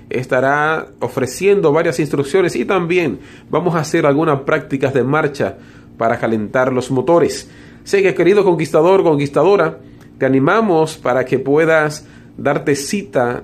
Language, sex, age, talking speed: English, male, 40-59, 130 wpm